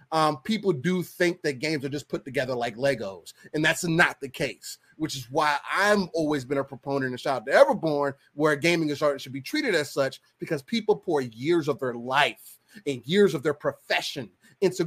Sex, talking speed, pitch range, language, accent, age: male, 215 wpm, 140-190 Hz, English, American, 30-49